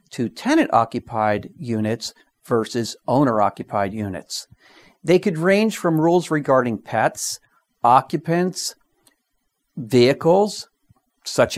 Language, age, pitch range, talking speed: English, 50-69, 115-165 Hz, 85 wpm